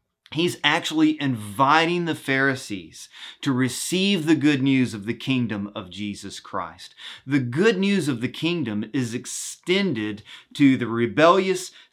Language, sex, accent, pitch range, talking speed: English, male, American, 115-150 Hz, 135 wpm